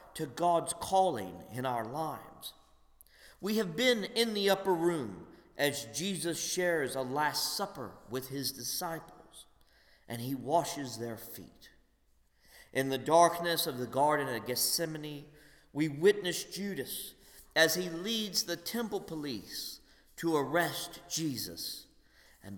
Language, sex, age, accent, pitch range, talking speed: English, male, 50-69, American, 110-160 Hz, 130 wpm